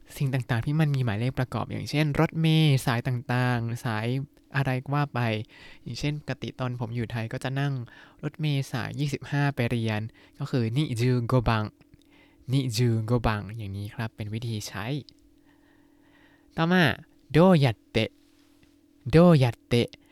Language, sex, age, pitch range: Thai, male, 20-39, 115-155 Hz